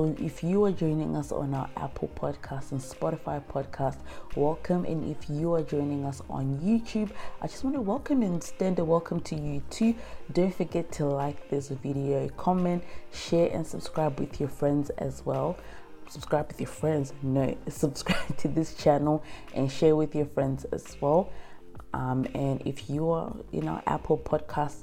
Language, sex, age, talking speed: English, female, 30-49, 175 wpm